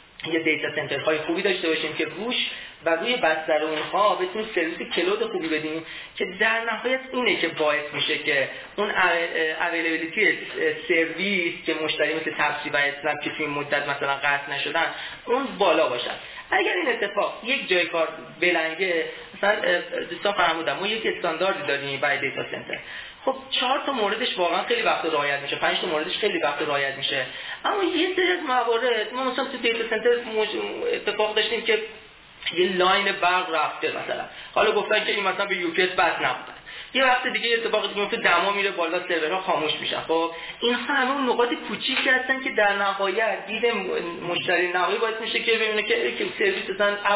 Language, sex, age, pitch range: Persian, male, 30-49, 160-235 Hz